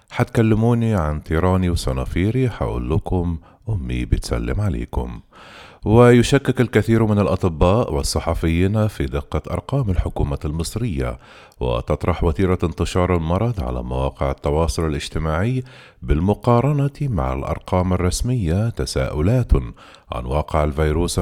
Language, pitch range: Arabic, 70-105 Hz